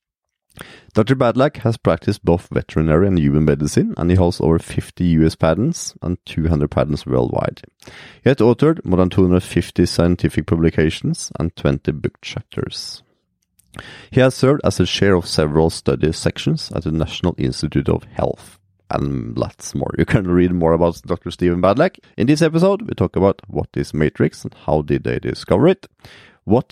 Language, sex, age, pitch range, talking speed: English, male, 30-49, 85-110 Hz, 170 wpm